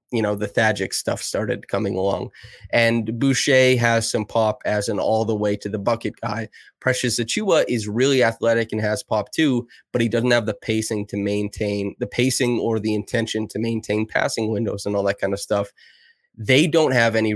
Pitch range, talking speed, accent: 105-120 Hz, 200 wpm, American